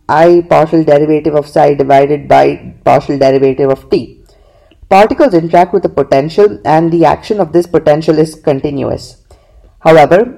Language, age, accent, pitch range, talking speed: English, 20-39, Indian, 150-185 Hz, 145 wpm